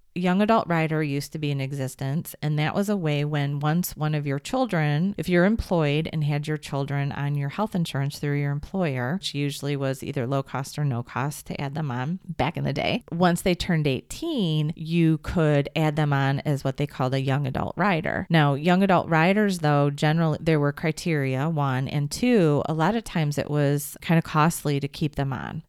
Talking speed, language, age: 215 wpm, English, 30-49